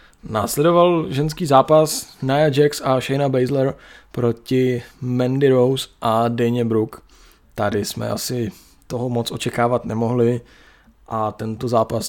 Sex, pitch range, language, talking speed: male, 115-130 Hz, Czech, 120 wpm